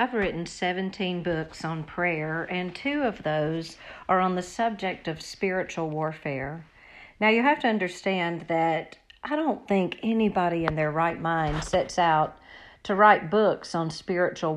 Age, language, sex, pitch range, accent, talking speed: 50-69, English, female, 165-215 Hz, American, 155 wpm